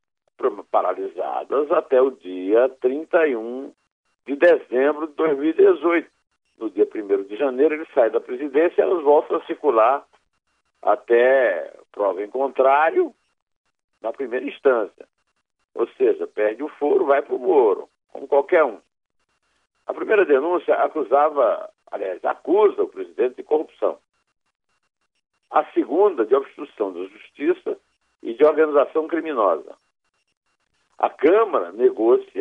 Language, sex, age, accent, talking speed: Portuguese, male, 60-79, Brazilian, 120 wpm